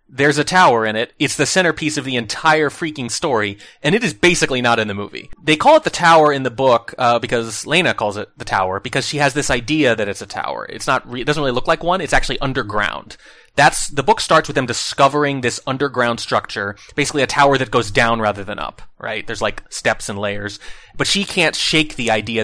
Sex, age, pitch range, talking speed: male, 30-49, 115-155 Hz, 235 wpm